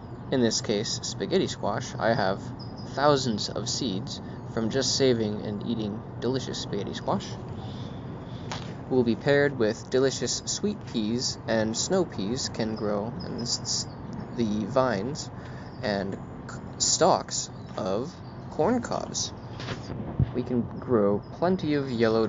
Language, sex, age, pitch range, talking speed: English, male, 20-39, 110-130 Hz, 115 wpm